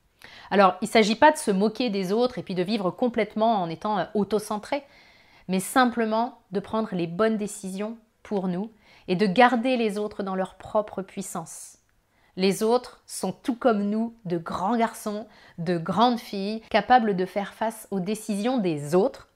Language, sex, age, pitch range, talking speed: French, female, 30-49, 185-230 Hz, 175 wpm